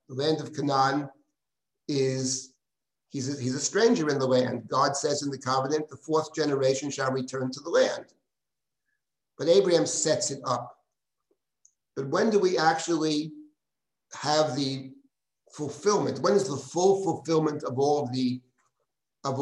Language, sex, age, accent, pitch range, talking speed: English, male, 50-69, American, 135-160 Hz, 140 wpm